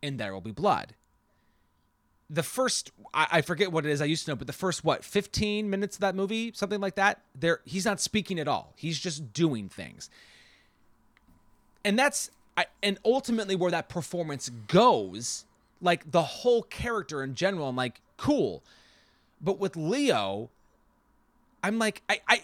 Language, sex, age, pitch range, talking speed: English, male, 30-49, 150-200 Hz, 170 wpm